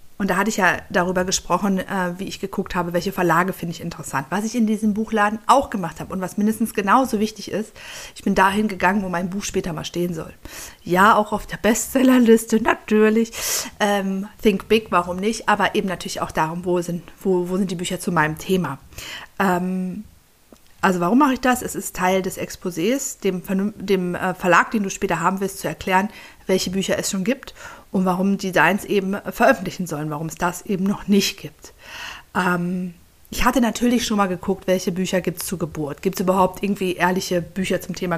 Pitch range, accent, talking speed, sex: 180-210 Hz, German, 200 wpm, female